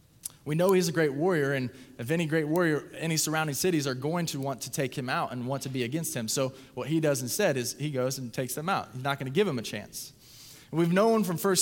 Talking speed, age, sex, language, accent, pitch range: 270 wpm, 20-39, male, English, American, 135-185 Hz